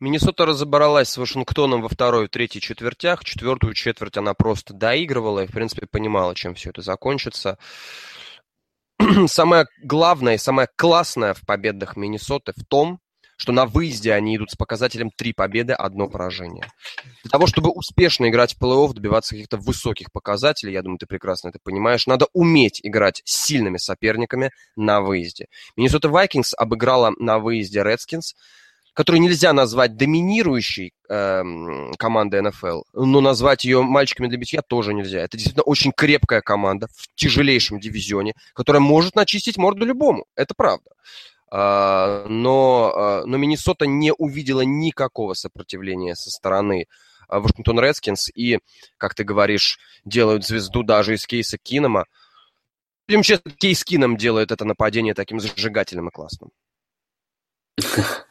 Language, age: Russian, 20-39